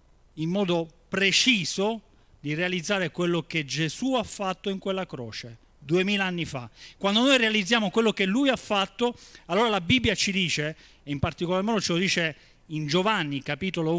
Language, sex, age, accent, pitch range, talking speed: Italian, male, 40-59, native, 155-240 Hz, 165 wpm